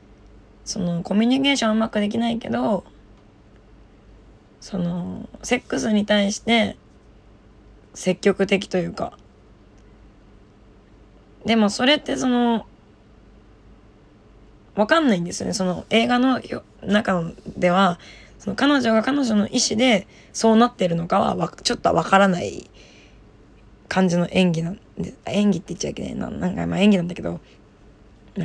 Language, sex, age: Japanese, female, 20-39